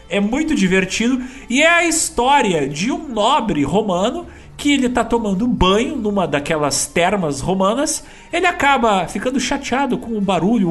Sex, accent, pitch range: male, Brazilian, 175-265 Hz